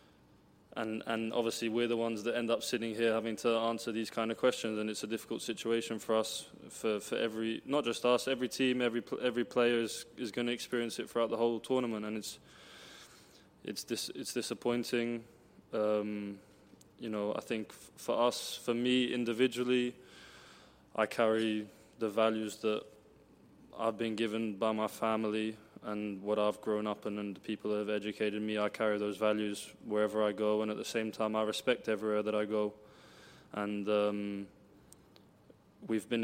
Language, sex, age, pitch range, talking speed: English, male, 20-39, 105-115 Hz, 180 wpm